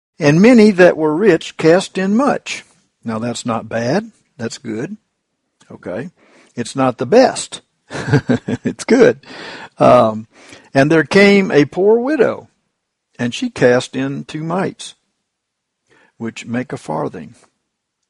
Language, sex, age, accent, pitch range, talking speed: English, male, 60-79, American, 115-160 Hz, 125 wpm